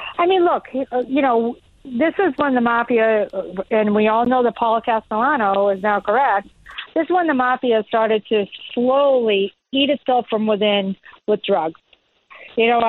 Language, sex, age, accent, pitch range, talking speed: English, female, 50-69, American, 210-265 Hz, 170 wpm